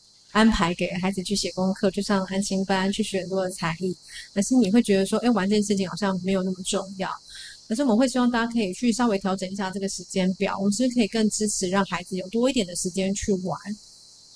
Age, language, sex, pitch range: 20-39, Chinese, female, 185-215 Hz